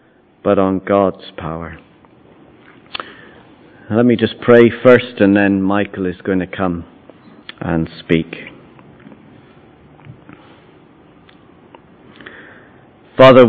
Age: 50-69